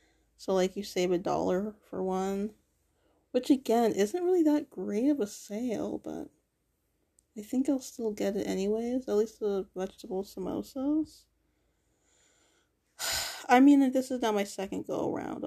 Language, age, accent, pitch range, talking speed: English, 20-39, American, 190-230 Hz, 150 wpm